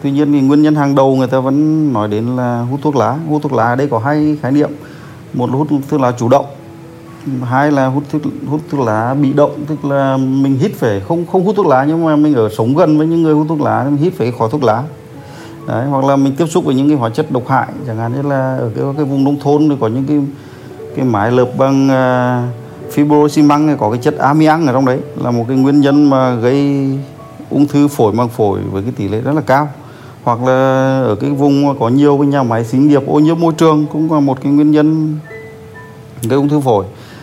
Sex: male